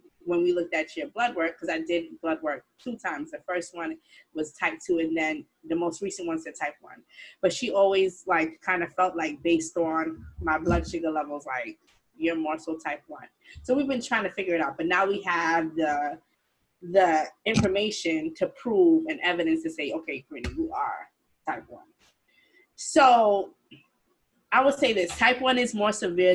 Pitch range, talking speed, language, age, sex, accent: 165-235 Hz, 195 wpm, English, 20-39, female, American